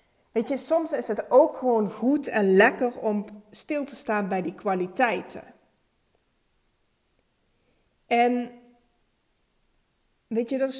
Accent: Dutch